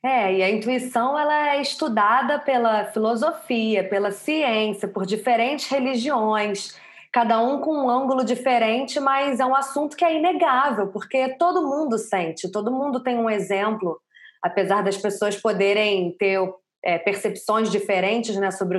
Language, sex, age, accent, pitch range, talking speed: Portuguese, female, 20-39, Brazilian, 205-270 Hz, 145 wpm